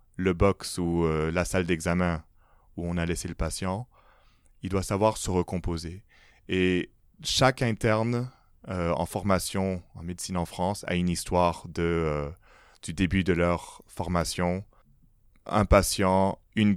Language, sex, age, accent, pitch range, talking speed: French, male, 20-39, French, 85-100 Hz, 145 wpm